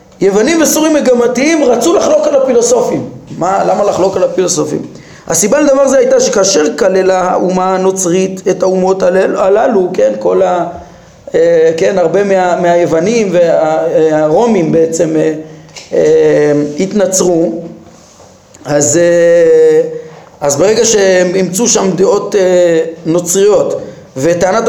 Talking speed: 100 wpm